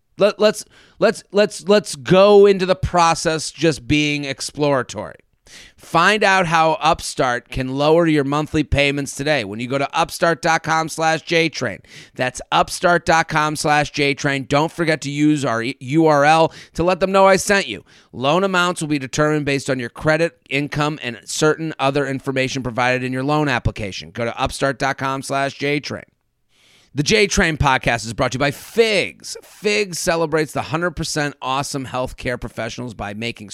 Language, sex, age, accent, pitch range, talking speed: English, male, 30-49, American, 130-165 Hz, 160 wpm